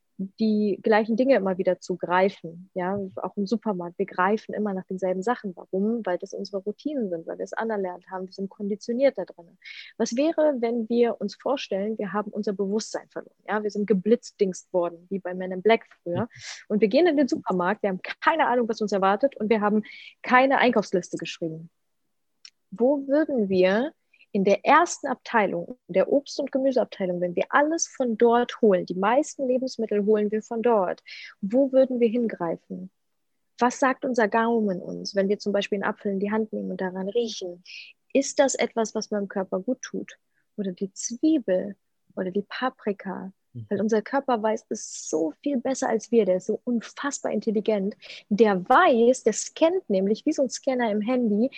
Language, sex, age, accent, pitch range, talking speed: German, female, 20-39, German, 190-255 Hz, 185 wpm